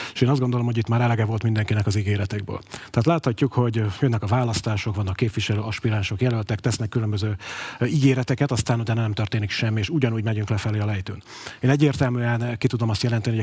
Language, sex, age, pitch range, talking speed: Hungarian, male, 30-49, 110-125 Hz, 195 wpm